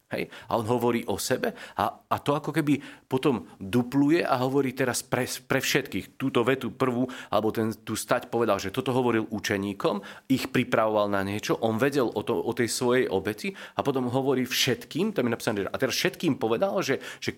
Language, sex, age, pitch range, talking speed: Slovak, male, 40-59, 115-150 Hz, 195 wpm